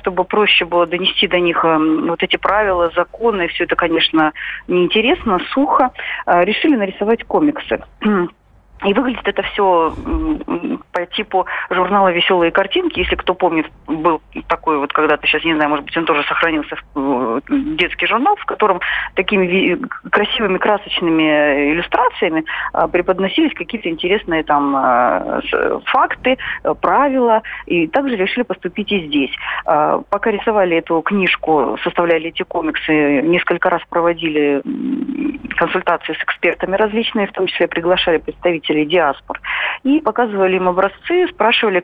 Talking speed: 130 wpm